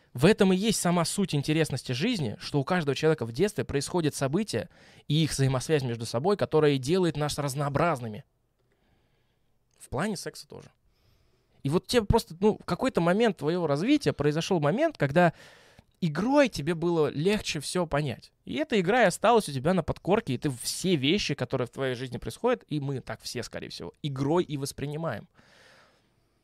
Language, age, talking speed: Russian, 20-39, 170 wpm